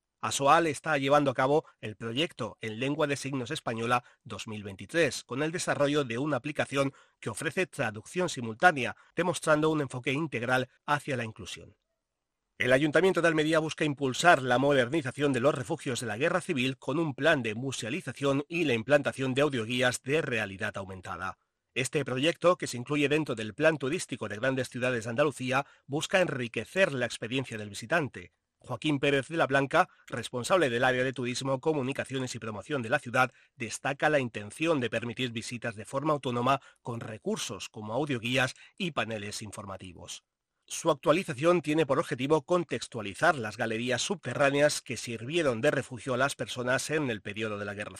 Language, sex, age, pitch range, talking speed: Spanish, male, 40-59, 120-150 Hz, 165 wpm